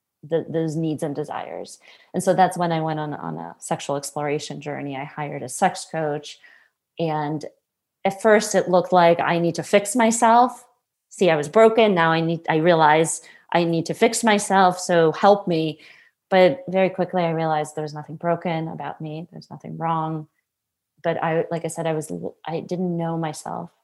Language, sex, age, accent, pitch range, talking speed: English, female, 30-49, American, 155-185 Hz, 185 wpm